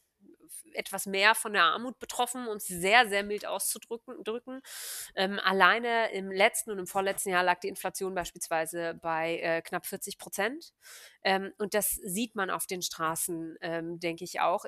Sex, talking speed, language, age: female, 170 wpm, German, 30-49